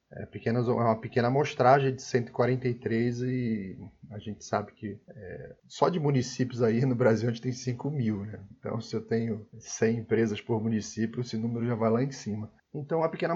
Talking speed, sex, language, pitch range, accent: 190 wpm, male, Portuguese, 120-155 Hz, Brazilian